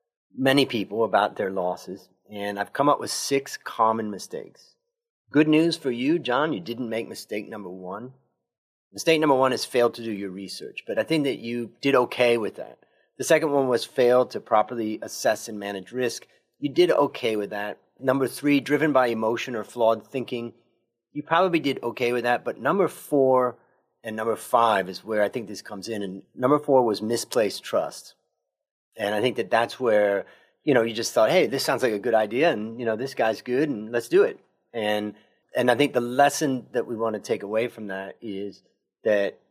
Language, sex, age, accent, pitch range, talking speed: English, male, 30-49, American, 105-135 Hz, 205 wpm